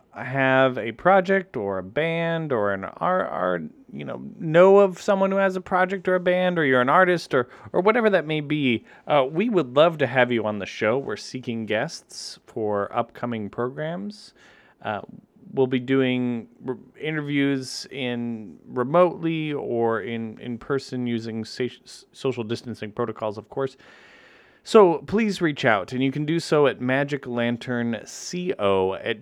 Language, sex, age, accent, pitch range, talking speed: English, male, 30-49, American, 115-155 Hz, 155 wpm